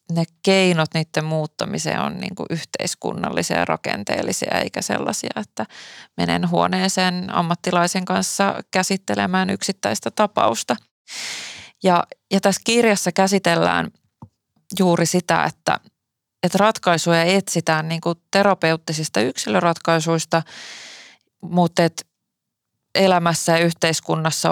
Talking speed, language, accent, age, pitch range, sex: 85 wpm, Finnish, native, 20-39, 160-185 Hz, female